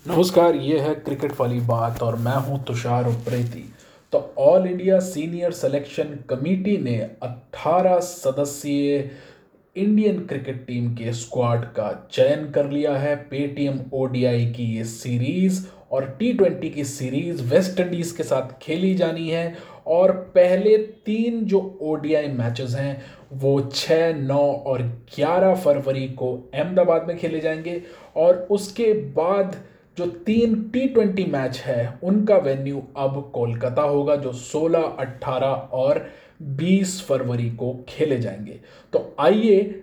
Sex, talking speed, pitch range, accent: male, 135 wpm, 135-180 Hz, native